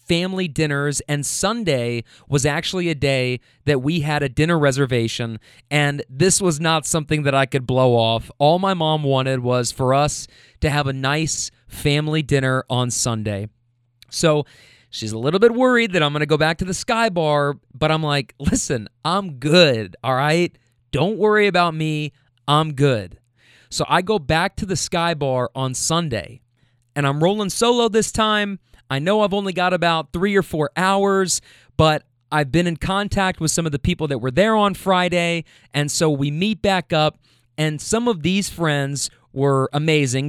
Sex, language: male, English